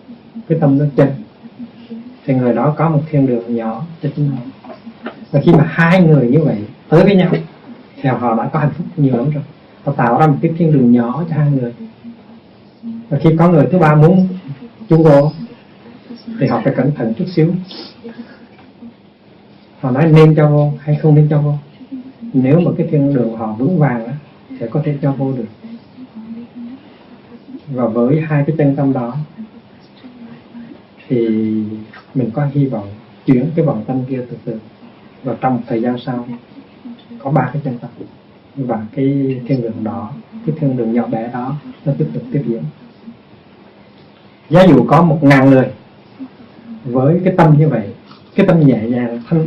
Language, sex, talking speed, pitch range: Vietnamese, male, 180 wpm, 130-185 Hz